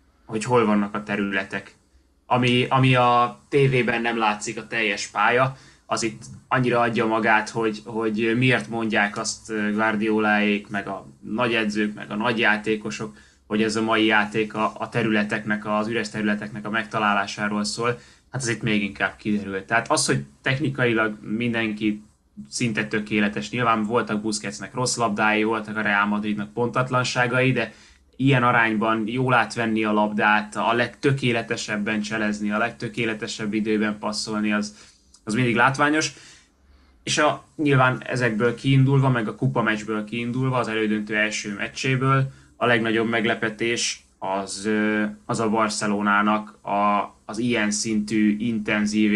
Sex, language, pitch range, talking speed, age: male, Hungarian, 105-120 Hz, 135 wpm, 20-39